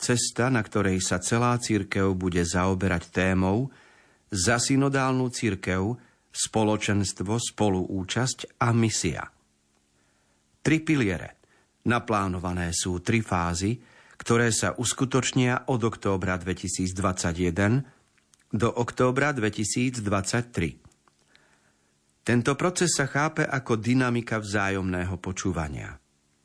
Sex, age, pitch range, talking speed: male, 40-59, 90-120 Hz, 85 wpm